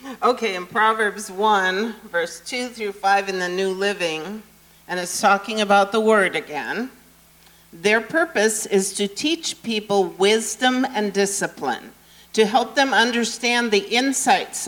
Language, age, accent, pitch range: English, 50-69, American, 195-245 Hz